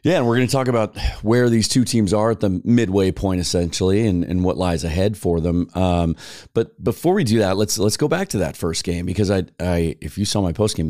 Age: 30-49